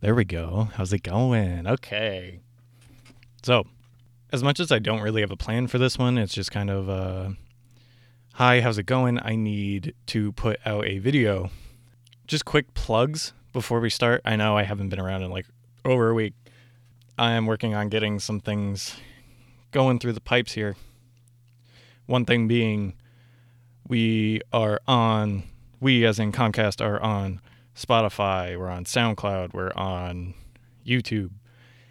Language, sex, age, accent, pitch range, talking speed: English, male, 20-39, American, 105-120 Hz, 160 wpm